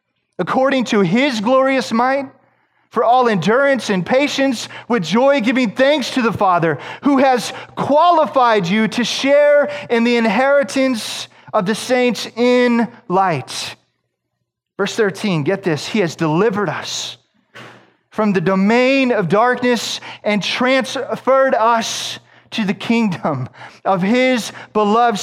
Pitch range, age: 170-255 Hz, 30-49